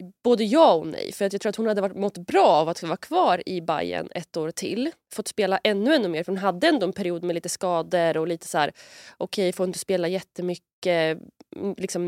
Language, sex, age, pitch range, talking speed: Swedish, female, 20-39, 170-215 Hz, 240 wpm